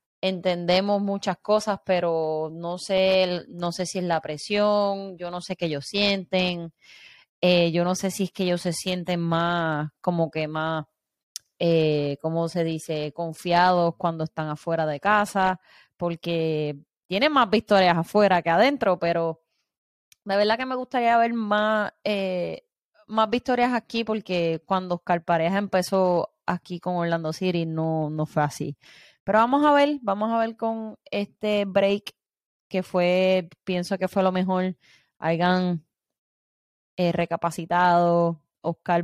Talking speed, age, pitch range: 145 wpm, 20-39, 170-195 Hz